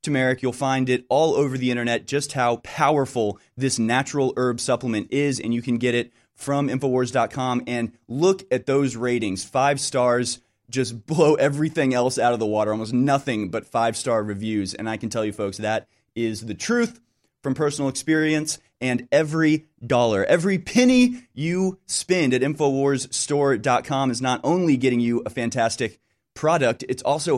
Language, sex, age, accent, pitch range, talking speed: English, male, 30-49, American, 115-140 Hz, 160 wpm